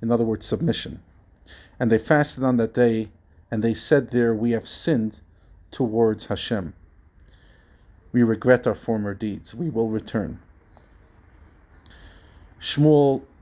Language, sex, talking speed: English, male, 125 wpm